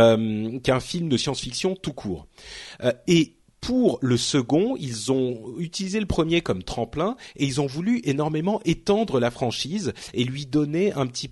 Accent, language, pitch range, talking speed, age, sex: French, French, 115-165 Hz, 160 wpm, 40-59, male